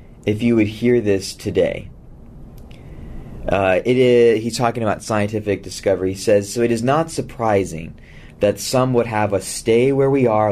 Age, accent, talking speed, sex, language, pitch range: 30-49, American, 170 wpm, male, English, 95-120 Hz